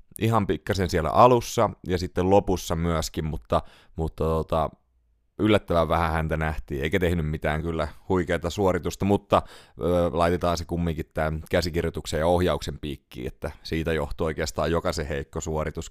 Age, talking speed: 30-49, 145 wpm